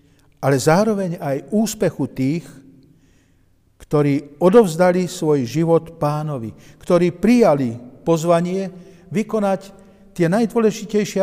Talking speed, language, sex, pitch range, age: 85 wpm, Slovak, male, 135-175 Hz, 50-69